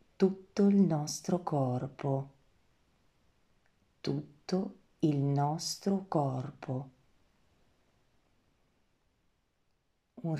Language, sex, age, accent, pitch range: Italian, female, 40-59, native, 135-165 Hz